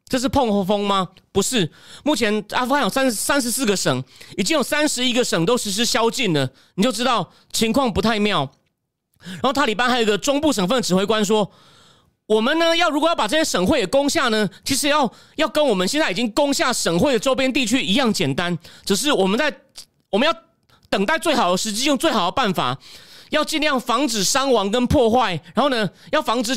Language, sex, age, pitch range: Chinese, male, 30-49, 205-285 Hz